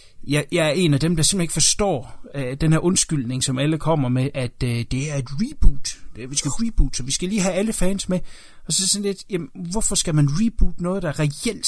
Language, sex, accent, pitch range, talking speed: Danish, male, native, 135-180 Hz, 240 wpm